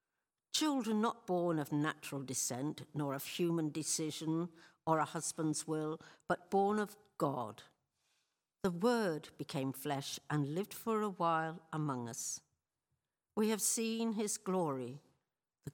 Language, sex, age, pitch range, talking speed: English, female, 60-79, 150-200 Hz, 135 wpm